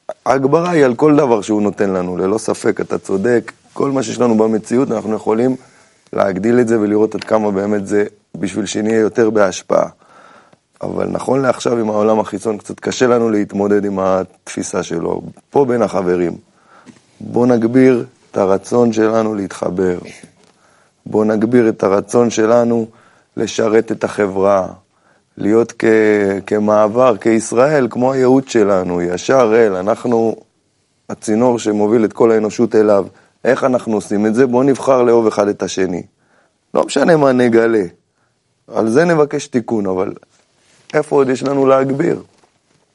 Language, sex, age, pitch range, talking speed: Hebrew, male, 20-39, 105-125 Hz, 145 wpm